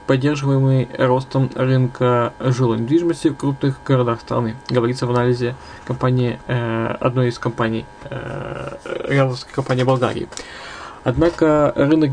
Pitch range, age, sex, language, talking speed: 120-140 Hz, 20-39, male, Russian, 110 wpm